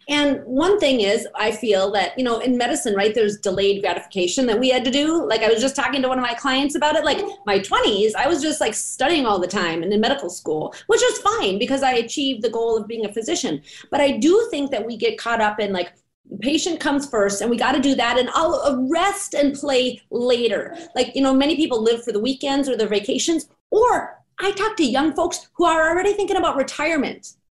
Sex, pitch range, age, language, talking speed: female, 235-335 Hz, 30-49, English, 240 wpm